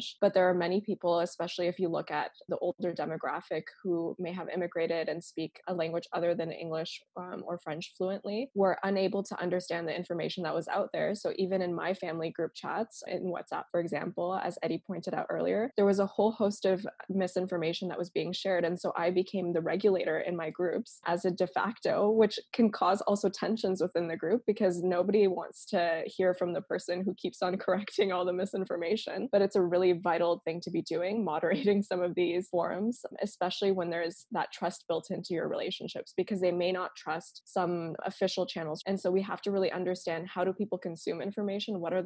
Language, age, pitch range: English, 20-39, 170-195 Hz